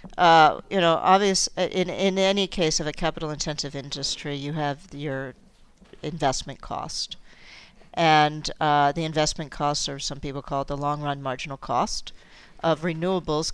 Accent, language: American, English